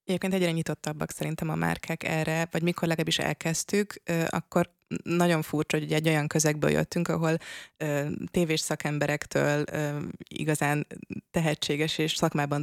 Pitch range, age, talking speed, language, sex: 145-160 Hz, 20-39, 125 wpm, Hungarian, female